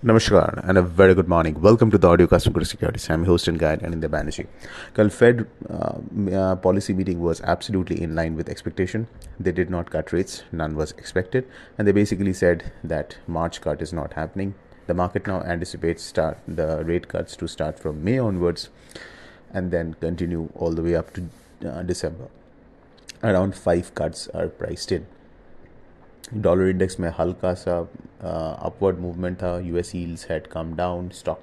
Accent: Indian